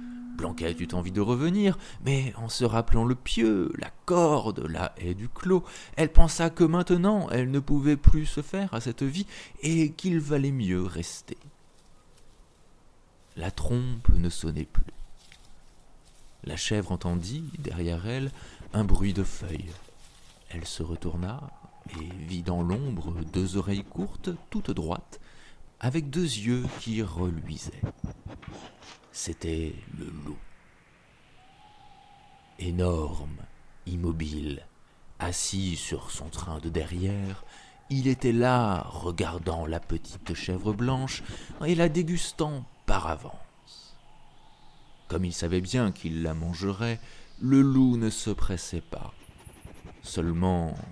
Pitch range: 85-135 Hz